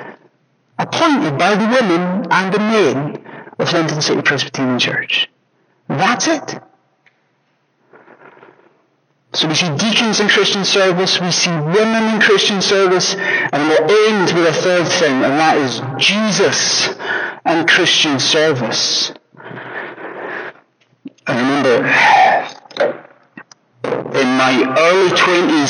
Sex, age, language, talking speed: male, 60-79, English, 105 wpm